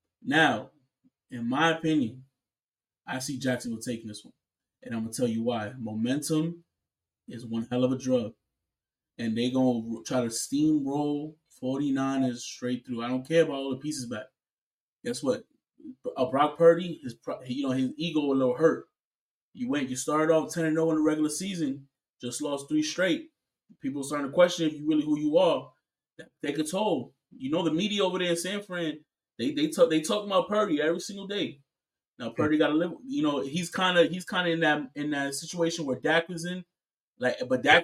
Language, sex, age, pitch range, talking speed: English, male, 20-39, 130-175 Hz, 200 wpm